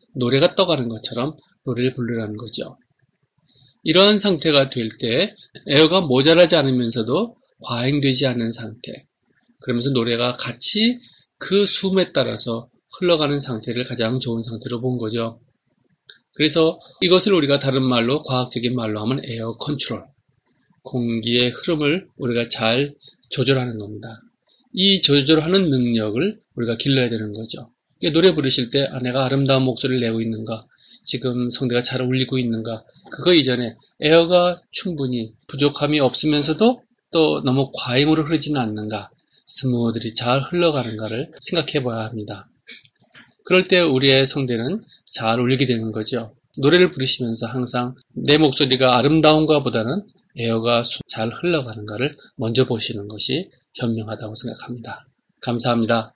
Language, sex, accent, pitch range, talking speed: English, male, Korean, 115-155 Hz, 115 wpm